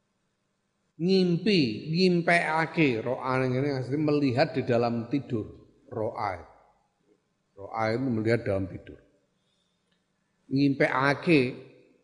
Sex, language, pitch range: male, Indonesian, 125-155 Hz